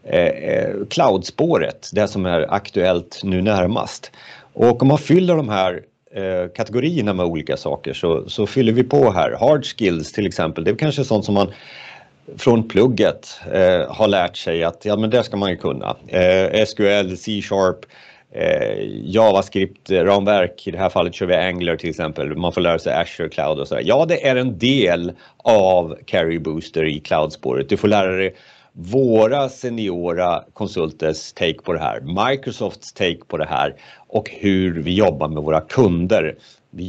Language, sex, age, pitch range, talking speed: Swedish, male, 30-49, 90-120 Hz, 170 wpm